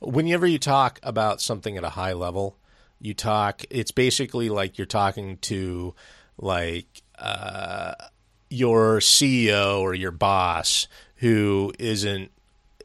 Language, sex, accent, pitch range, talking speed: English, male, American, 90-115 Hz, 120 wpm